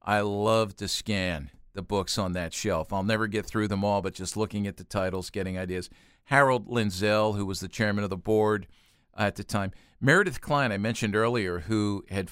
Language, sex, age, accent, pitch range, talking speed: English, male, 50-69, American, 95-110 Hz, 205 wpm